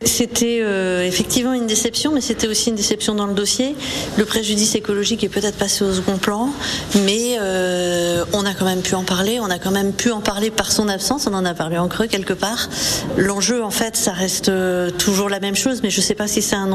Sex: female